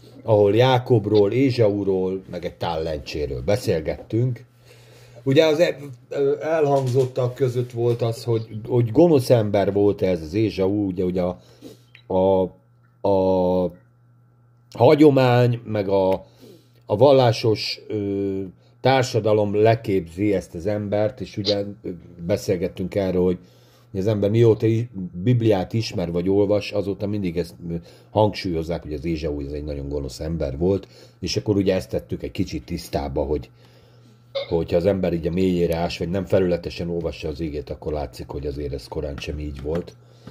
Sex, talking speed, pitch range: male, 135 wpm, 90-120 Hz